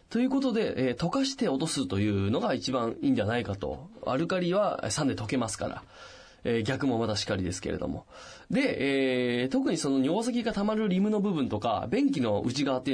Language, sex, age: Japanese, male, 20-39